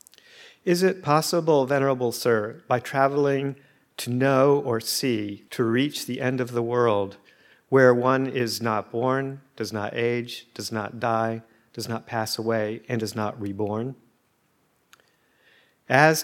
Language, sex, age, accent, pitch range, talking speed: English, male, 50-69, American, 110-125 Hz, 140 wpm